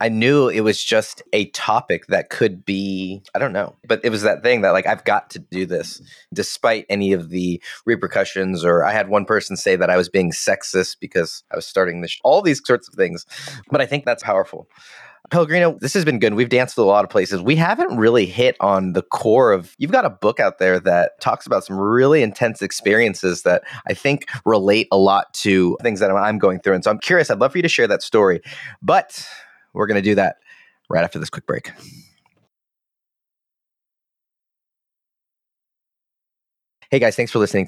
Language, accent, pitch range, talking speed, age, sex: English, American, 90-115 Hz, 205 wpm, 30-49, male